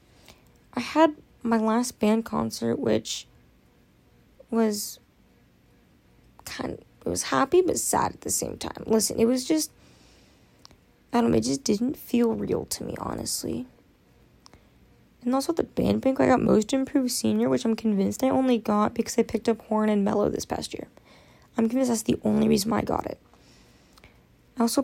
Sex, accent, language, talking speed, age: female, American, English, 175 wpm, 10-29